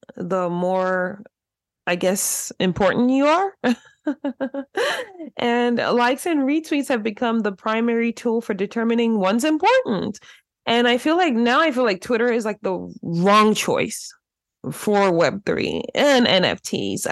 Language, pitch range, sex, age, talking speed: English, 185-240 Hz, female, 20-39, 135 wpm